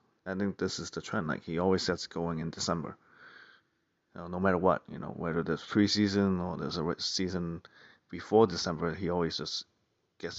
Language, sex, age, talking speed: English, male, 30-49, 190 wpm